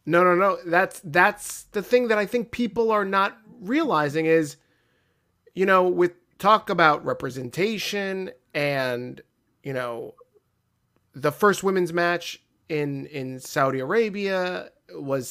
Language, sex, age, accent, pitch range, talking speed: English, male, 30-49, American, 135-185 Hz, 130 wpm